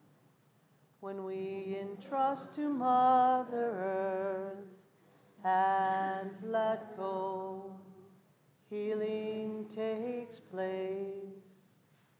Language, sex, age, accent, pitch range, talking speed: English, male, 40-59, American, 185-215 Hz, 60 wpm